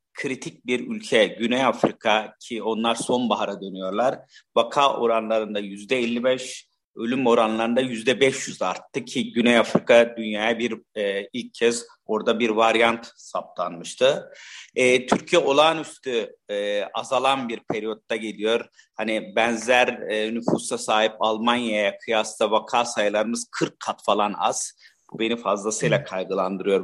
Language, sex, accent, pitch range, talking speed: Turkish, male, native, 115-130 Hz, 125 wpm